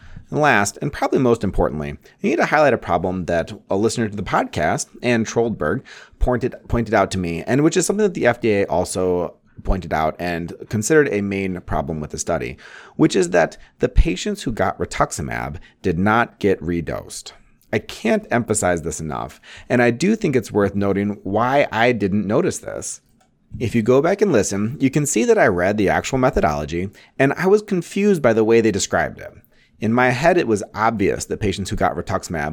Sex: male